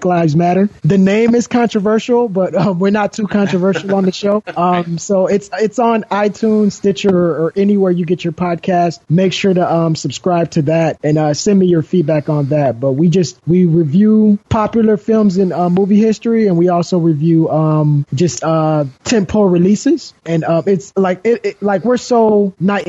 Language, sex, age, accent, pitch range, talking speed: English, male, 20-39, American, 165-205 Hz, 190 wpm